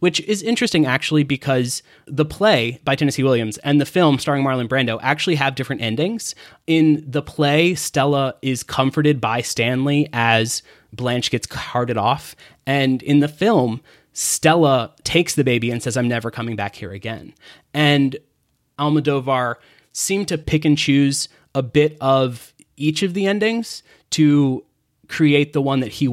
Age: 20-39